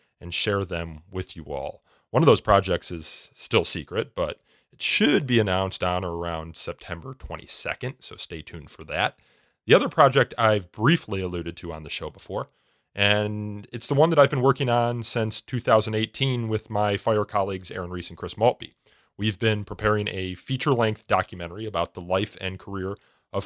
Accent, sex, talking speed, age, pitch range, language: American, male, 180 wpm, 30-49, 90-120 Hz, English